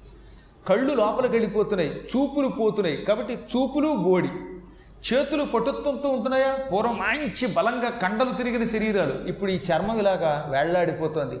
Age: 30-49